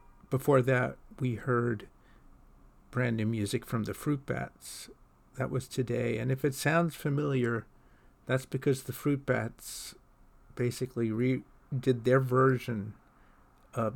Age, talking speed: 50-69, 125 wpm